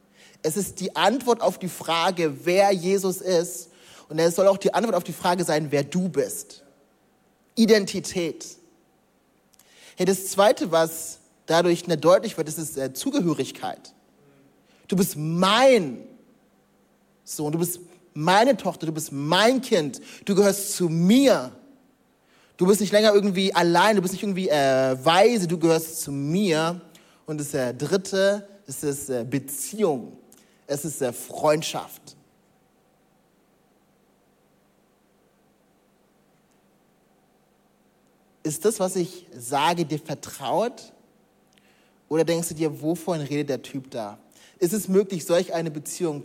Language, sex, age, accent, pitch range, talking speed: German, male, 30-49, German, 150-195 Hz, 125 wpm